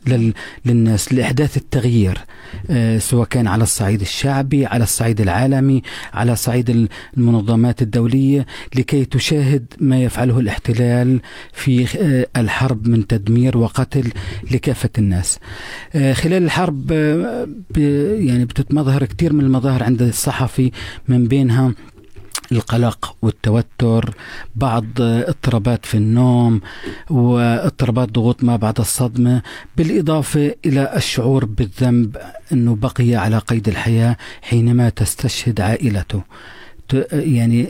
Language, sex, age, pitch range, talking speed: Arabic, male, 40-59, 115-135 Hz, 100 wpm